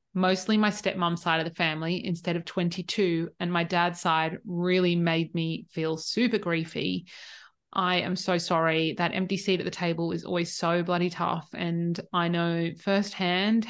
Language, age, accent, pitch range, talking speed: English, 30-49, Australian, 170-200 Hz, 170 wpm